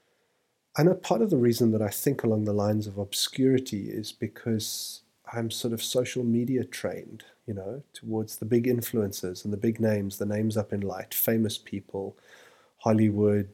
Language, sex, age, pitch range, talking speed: English, male, 30-49, 100-120 Hz, 175 wpm